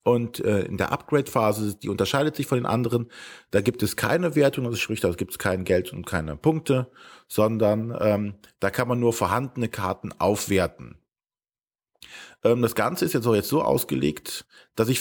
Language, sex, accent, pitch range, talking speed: German, male, German, 110-140 Hz, 185 wpm